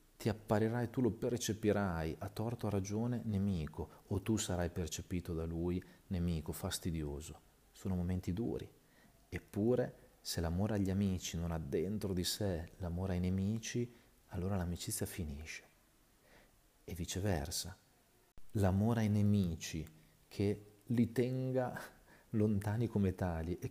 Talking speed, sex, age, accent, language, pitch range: 125 wpm, male, 40-59, native, Italian, 85-100 Hz